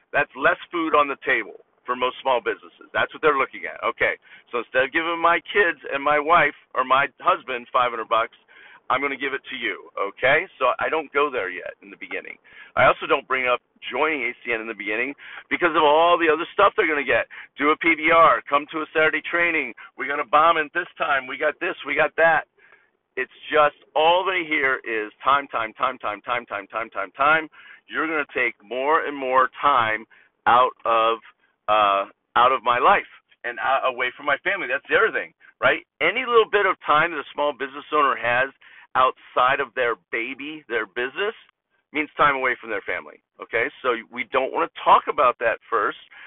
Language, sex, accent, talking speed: English, male, American, 215 wpm